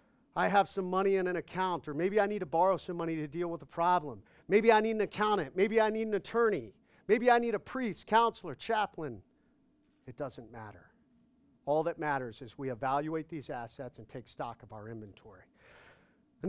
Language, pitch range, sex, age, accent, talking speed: English, 140-210 Hz, male, 40-59, American, 200 wpm